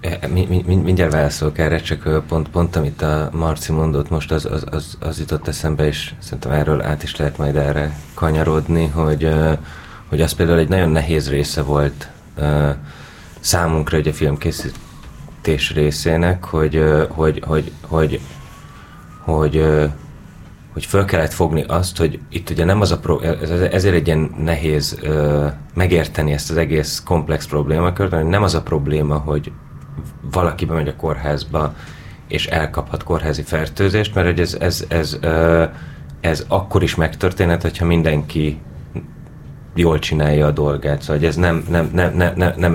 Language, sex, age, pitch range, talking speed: Hungarian, male, 30-49, 75-85 Hz, 155 wpm